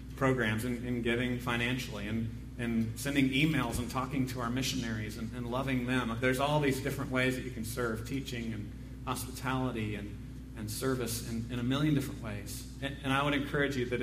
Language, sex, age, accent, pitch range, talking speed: English, male, 30-49, American, 120-135 Hz, 195 wpm